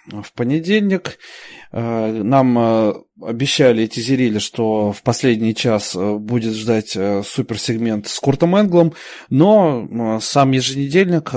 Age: 20-39